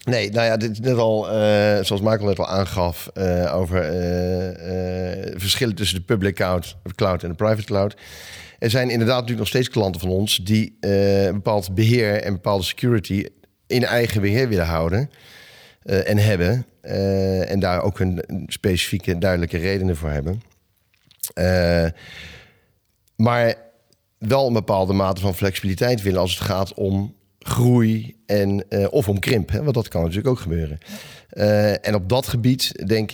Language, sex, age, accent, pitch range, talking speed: Dutch, male, 40-59, Dutch, 95-110 Hz, 165 wpm